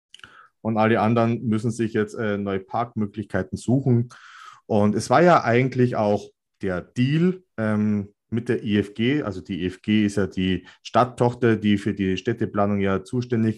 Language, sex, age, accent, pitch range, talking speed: German, male, 30-49, German, 100-125 Hz, 155 wpm